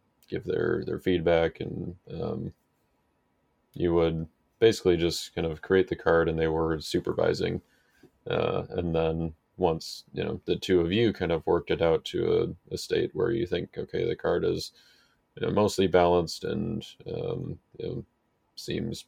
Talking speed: 170 wpm